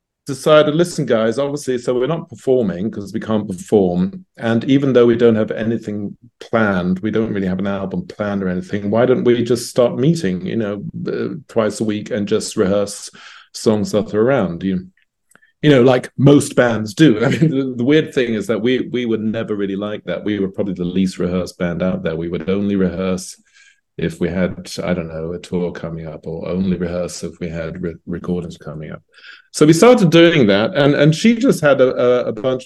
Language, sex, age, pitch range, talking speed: English, male, 40-59, 100-150 Hz, 215 wpm